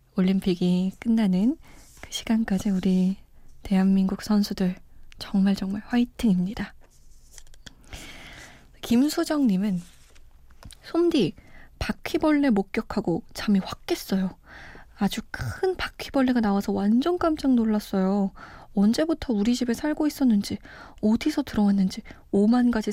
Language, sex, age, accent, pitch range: Korean, female, 20-39, native, 195-255 Hz